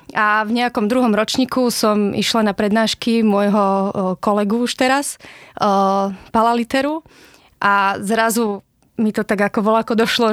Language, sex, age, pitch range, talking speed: Slovak, female, 20-39, 205-240 Hz, 130 wpm